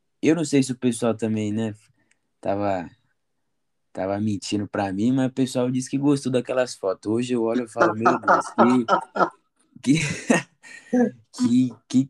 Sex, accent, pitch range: male, Brazilian, 105-130 Hz